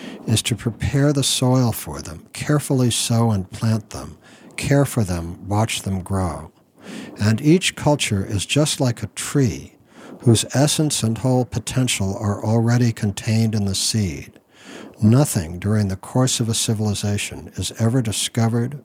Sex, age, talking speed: male, 60-79, 150 wpm